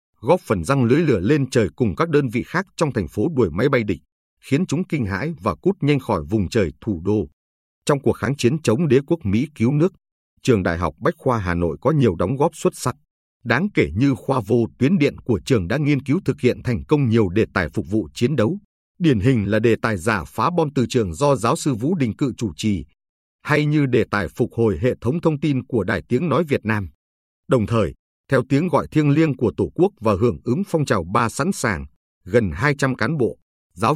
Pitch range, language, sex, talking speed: 105-145 Hz, Vietnamese, male, 235 wpm